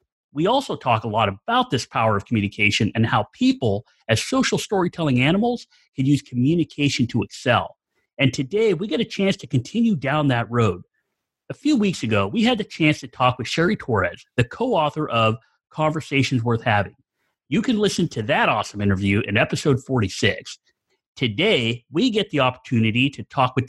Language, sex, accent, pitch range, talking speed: English, male, American, 115-155 Hz, 175 wpm